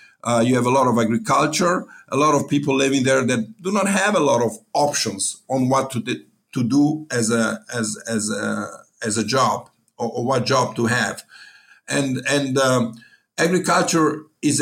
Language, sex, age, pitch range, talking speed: English, male, 50-69, 120-165 Hz, 190 wpm